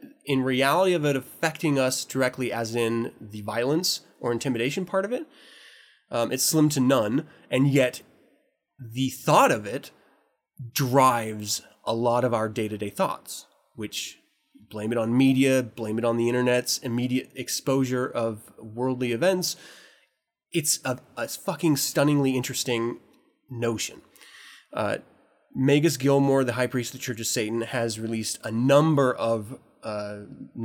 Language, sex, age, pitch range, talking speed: English, male, 20-39, 115-140 Hz, 145 wpm